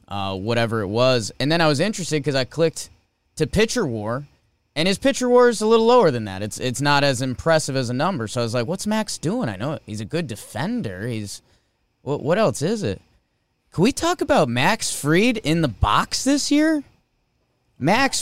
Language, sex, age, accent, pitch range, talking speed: English, male, 20-39, American, 115-190 Hz, 210 wpm